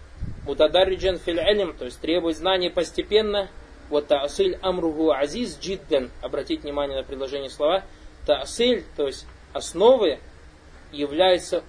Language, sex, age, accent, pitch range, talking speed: Russian, male, 20-39, native, 150-195 Hz, 85 wpm